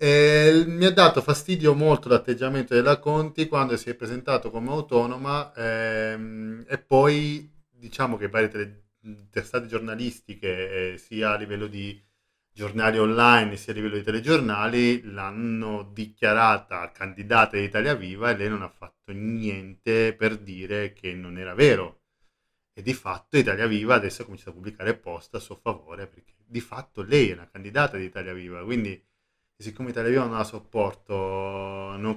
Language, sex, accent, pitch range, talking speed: Italian, male, native, 100-120 Hz, 160 wpm